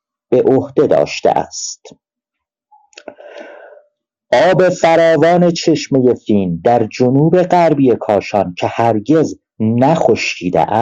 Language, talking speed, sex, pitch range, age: Persian, 85 wpm, male, 110-175 Hz, 50-69